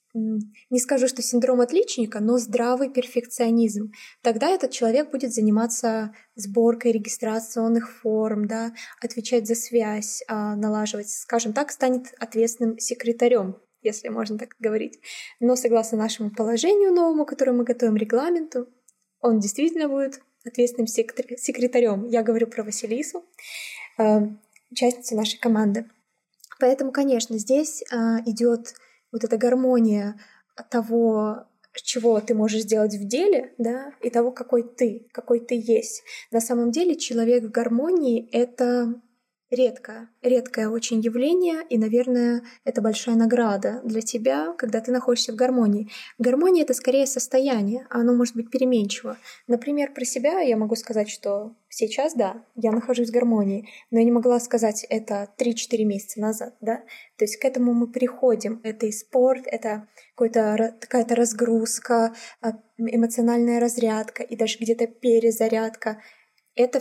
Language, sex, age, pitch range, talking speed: Russian, female, 20-39, 225-250 Hz, 135 wpm